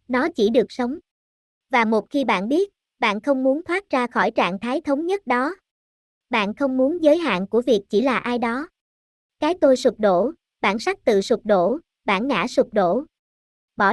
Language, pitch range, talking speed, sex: Vietnamese, 220-285 Hz, 195 wpm, male